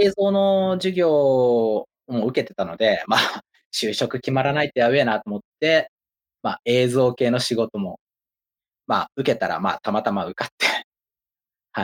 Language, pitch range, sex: Japanese, 140-220 Hz, male